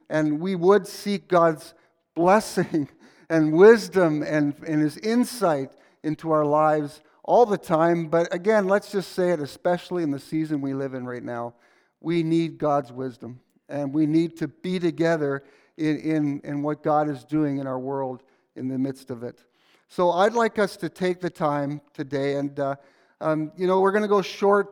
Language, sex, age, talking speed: Dutch, male, 50-69, 185 wpm